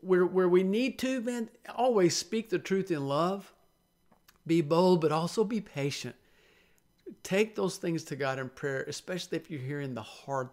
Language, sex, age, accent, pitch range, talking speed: English, male, 50-69, American, 140-165 Hz, 175 wpm